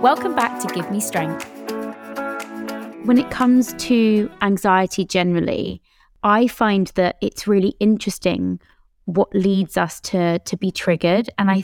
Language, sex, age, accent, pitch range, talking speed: English, female, 20-39, British, 175-205 Hz, 140 wpm